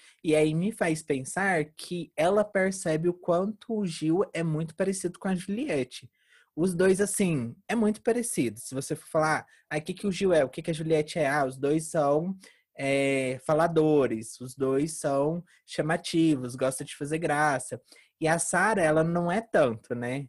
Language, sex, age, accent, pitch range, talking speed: Portuguese, male, 20-39, Brazilian, 140-180 Hz, 190 wpm